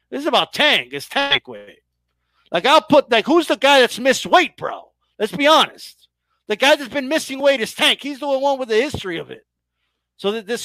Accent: American